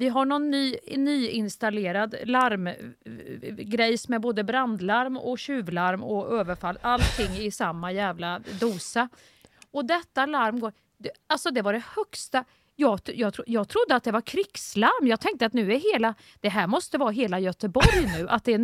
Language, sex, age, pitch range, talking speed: Swedish, female, 40-59, 220-300 Hz, 165 wpm